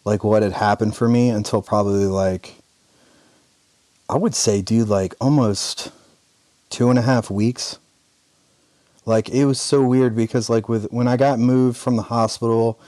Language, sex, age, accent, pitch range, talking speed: English, male, 30-49, American, 110-125 Hz, 165 wpm